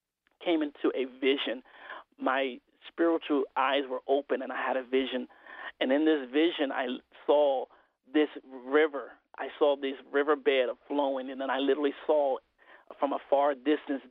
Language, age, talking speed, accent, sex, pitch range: English, 40-59, 155 wpm, American, male, 135-155 Hz